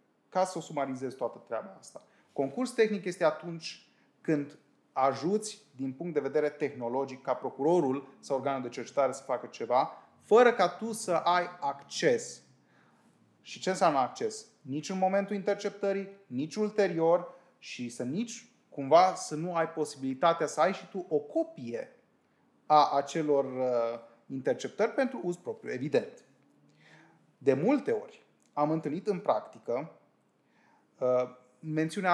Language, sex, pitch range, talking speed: Romanian, male, 140-225 Hz, 135 wpm